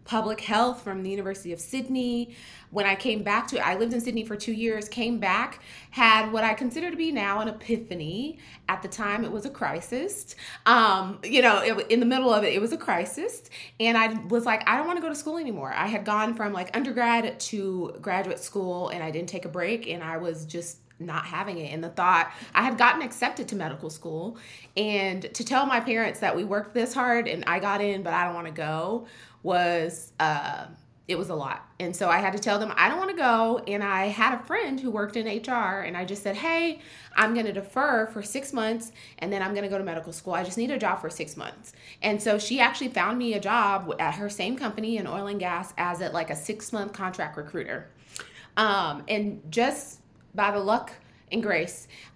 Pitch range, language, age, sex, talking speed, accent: 185-235 Hz, English, 20-39, female, 230 wpm, American